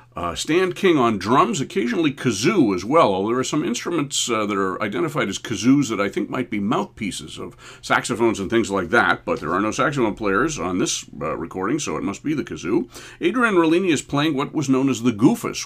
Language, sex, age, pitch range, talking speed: English, male, 50-69, 100-130 Hz, 220 wpm